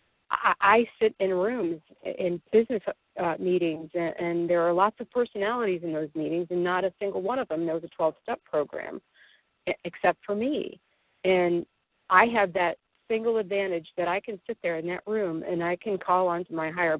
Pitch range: 170-205 Hz